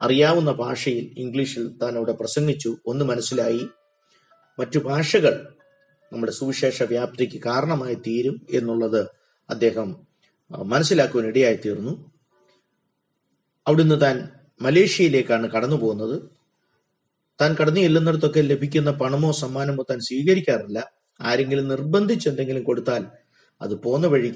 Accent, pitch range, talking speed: native, 120-155 Hz, 90 wpm